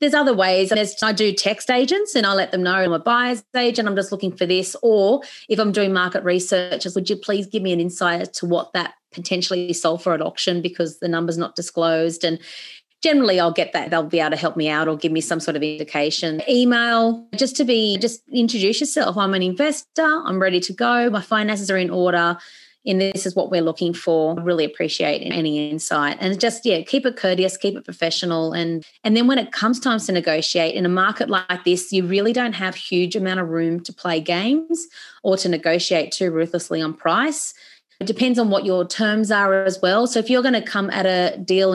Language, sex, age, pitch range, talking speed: English, female, 30-49, 170-220 Hz, 225 wpm